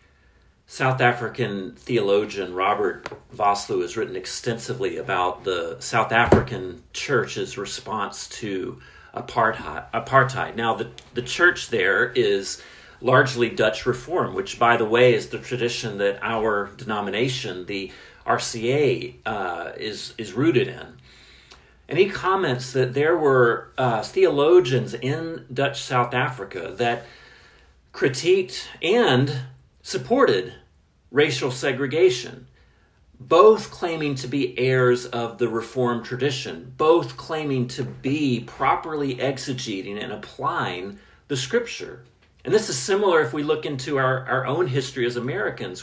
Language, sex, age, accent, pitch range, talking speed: English, male, 40-59, American, 120-145 Hz, 120 wpm